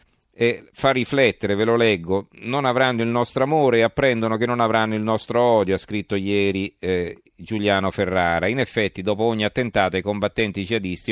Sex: male